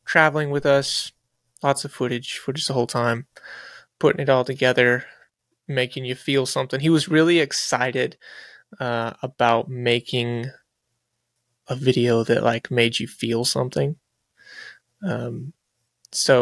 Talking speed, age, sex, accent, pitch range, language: 130 wpm, 20-39, male, American, 120-145 Hz, English